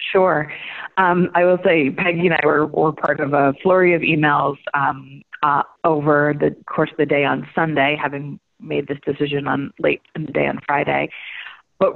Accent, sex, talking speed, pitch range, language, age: American, female, 190 wpm, 140-160 Hz, English, 30-49